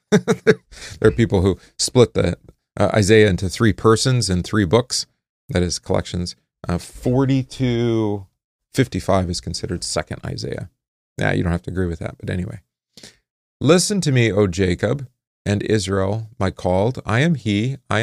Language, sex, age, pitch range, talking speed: English, male, 40-59, 90-115 Hz, 160 wpm